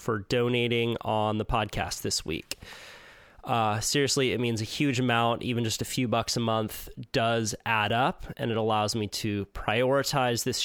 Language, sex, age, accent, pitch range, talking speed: English, male, 20-39, American, 110-135 Hz, 175 wpm